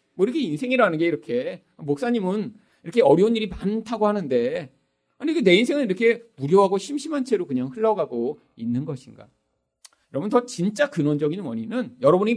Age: 40-59